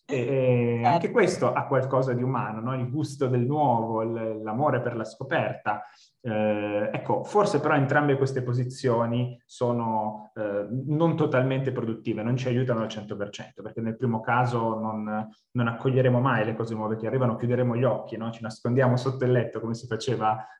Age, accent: 20-39, native